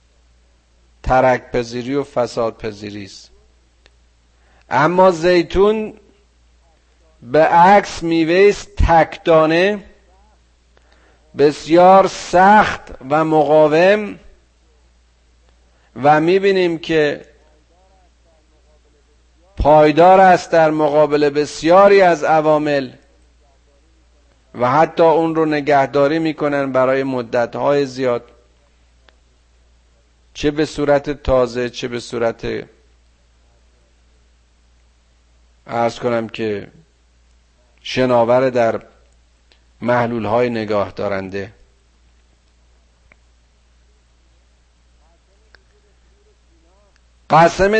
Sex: male